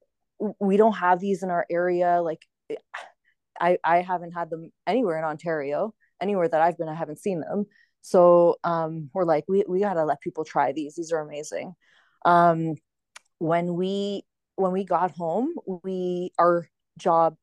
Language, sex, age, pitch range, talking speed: English, female, 20-39, 160-185 Hz, 165 wpm